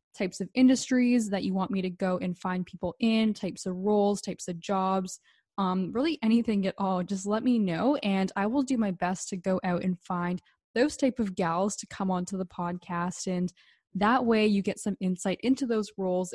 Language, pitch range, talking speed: English, 185-220 Hz, 215 wpm